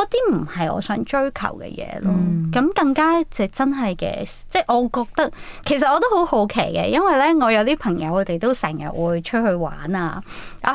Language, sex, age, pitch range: Chinese, female, 20-39, 180-270 Hz